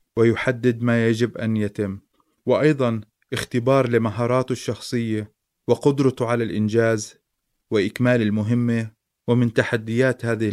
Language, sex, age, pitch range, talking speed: Arabic, male, 30-49, 110-125 Hz, 95 wpm